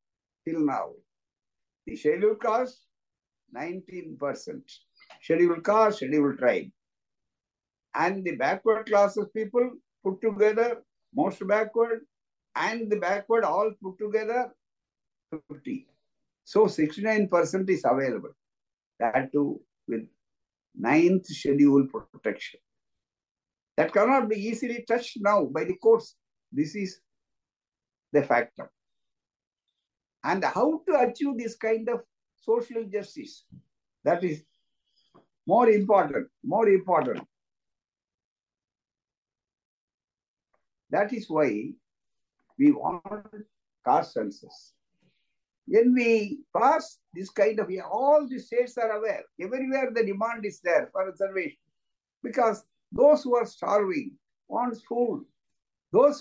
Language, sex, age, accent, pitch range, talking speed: Tamil, male, 60-79, native, 190-245 Hz, 105 wpm